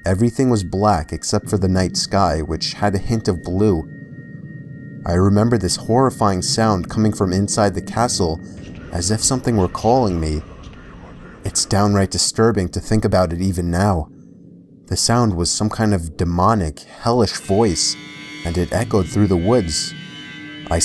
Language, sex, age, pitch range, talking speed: English, male, 30-49, 90-110 Hz, 160 wpm